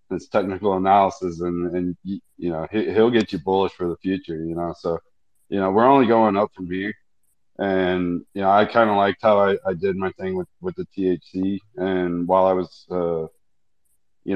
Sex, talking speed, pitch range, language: male, 205 wpm, 90-105 Hz, English